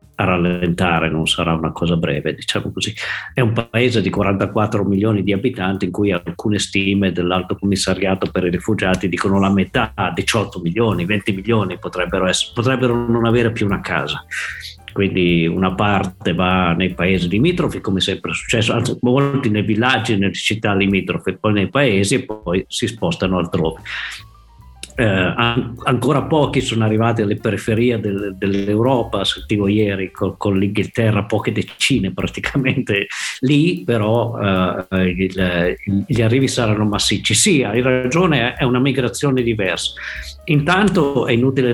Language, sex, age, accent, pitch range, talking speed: Italian, male, 50-69, native, 95-120 Hz, 140 wpm